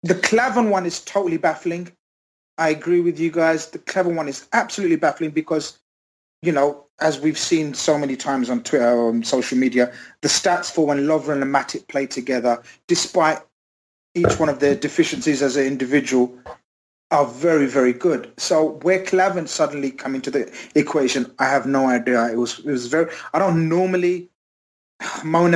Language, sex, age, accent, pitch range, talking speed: English, male, 30-49, British, 125-160 Hz, 175 wpm